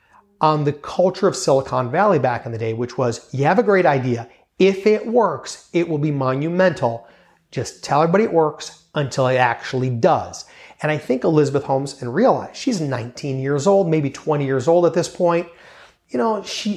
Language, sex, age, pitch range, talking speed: English, male, 30-49, 135-170 Hz, 195 wpm